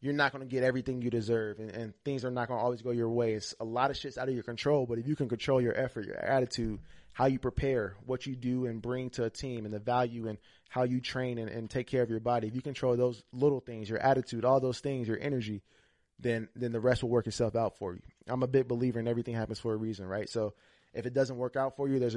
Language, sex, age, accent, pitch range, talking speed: English, male, 20-39, American, 110-125 Hz, 285 wpm